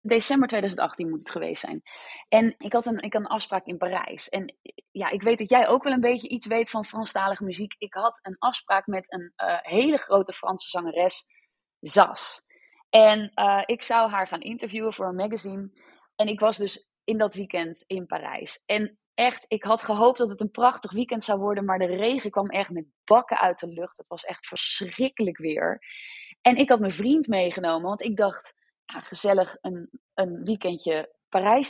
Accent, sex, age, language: Dutch, female, 20-39, Dutch